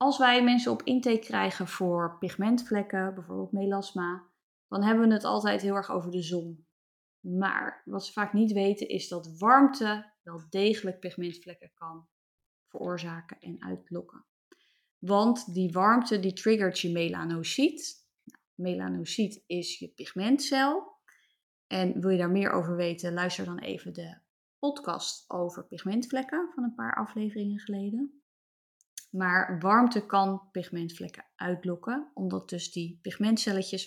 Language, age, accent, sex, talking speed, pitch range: Dutch, 20-39, Dutch, female, 135 wpm, 175-220 Hz